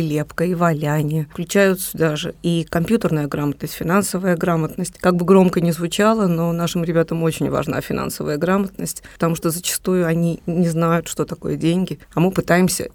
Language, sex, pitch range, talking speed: Russian, female, 160-190 Hz, 160 wpm